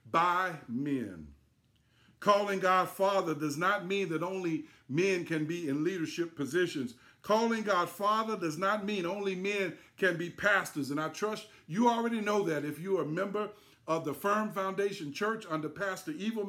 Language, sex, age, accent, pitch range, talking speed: English, male, 50-69, American, 165-220 Hz, 170 wpm